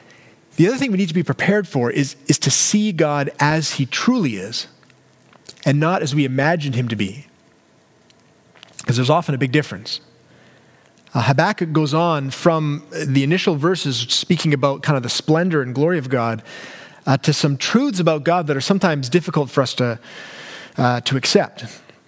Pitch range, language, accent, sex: 145-190 Hz, English, American, male